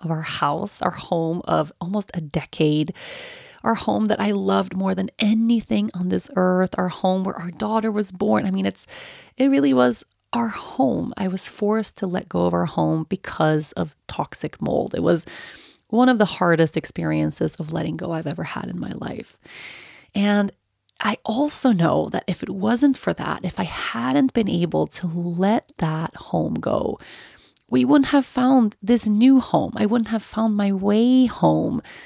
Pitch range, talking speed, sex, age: 165-220 Hz, 185 wpm, female, 30-49